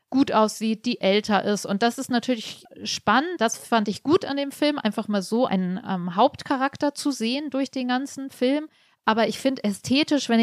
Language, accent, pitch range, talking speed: German, German, 190-230 Hz, 195 wpm